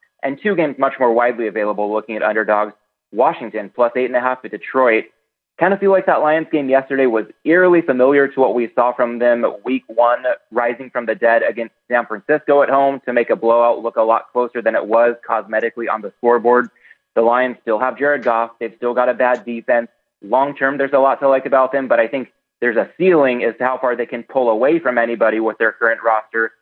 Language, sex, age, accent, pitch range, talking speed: English, male, 20-39, American, 115-135 Hz, 230 wpm